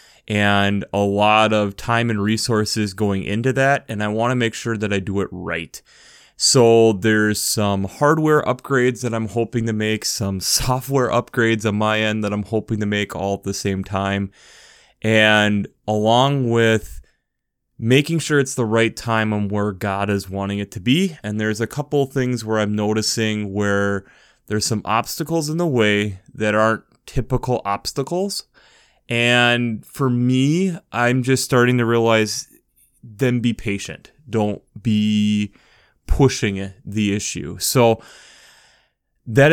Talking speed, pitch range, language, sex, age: 155 wpm, 105-125 Hz, English, male, 20-39